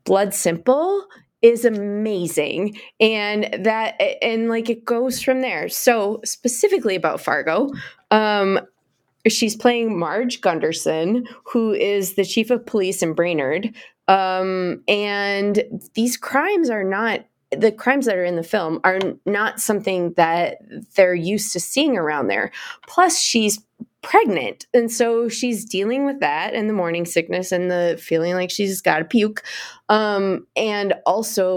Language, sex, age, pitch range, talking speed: English, female, 20-39, 185-230 Hz, 145 wpm